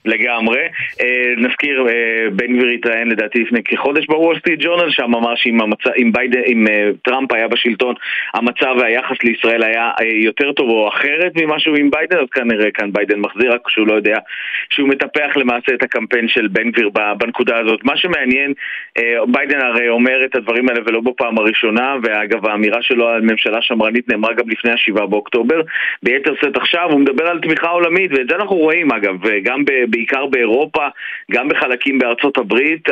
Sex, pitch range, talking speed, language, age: male, 115-145 Hz, 150 wpm, Hebrew, 30-49